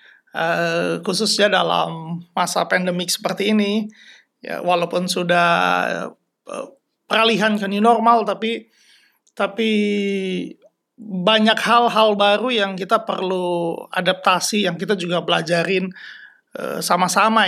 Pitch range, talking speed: 180-230 Hz, 105 wpm